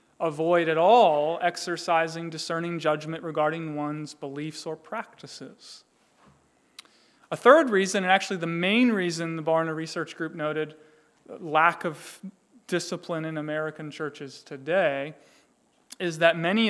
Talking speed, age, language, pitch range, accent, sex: 120 wpm, 30-49, English, 155-195 Hz, American, male